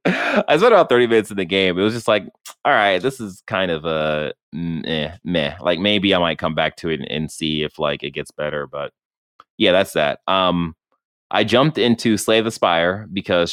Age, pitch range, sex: 20-39, 90-115 Hz, male